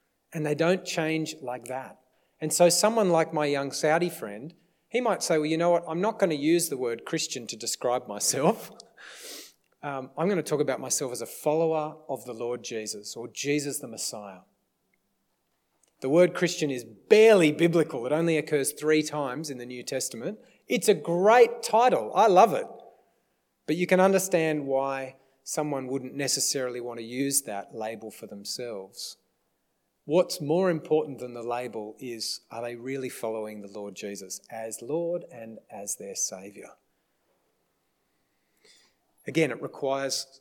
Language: English